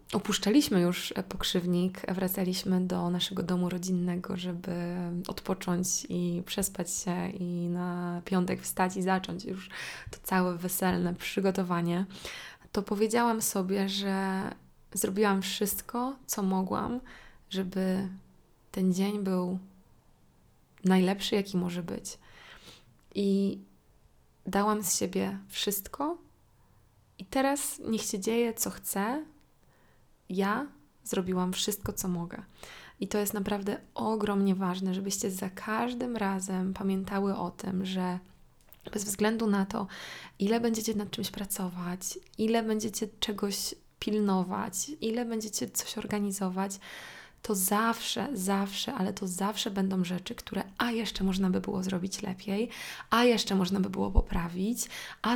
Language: Polish